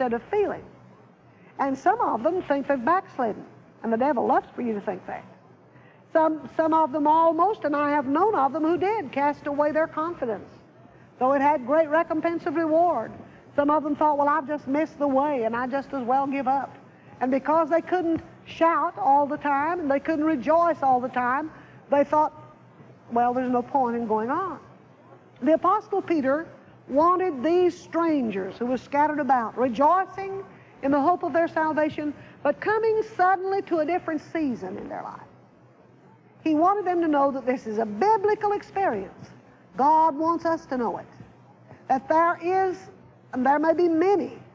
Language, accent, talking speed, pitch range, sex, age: English, American, 180 wpm, 270-345 Hz, female, 50-69